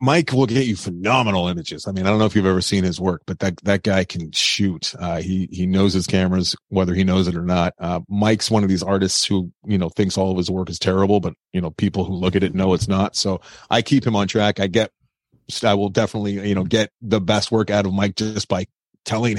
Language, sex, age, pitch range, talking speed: English, male, 30-49, 95-110 Hz, 265 wpm